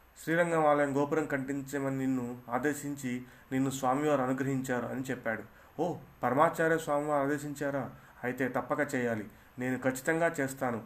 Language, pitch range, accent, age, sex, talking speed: Telugu, 125-150 Hz, native, 30-49, male, 115 wpm